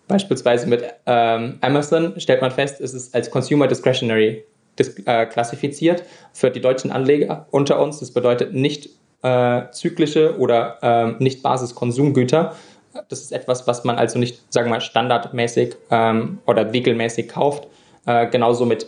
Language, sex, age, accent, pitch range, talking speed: German, male, 20-39, German, 120-145 Hz, 145 wpm